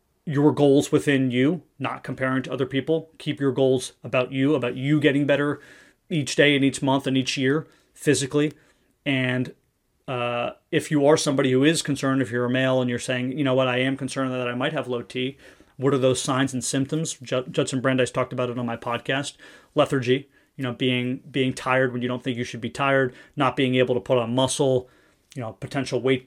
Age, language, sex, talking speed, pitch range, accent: 30-49, English, male, 215 wpm, 125-145 Hz, American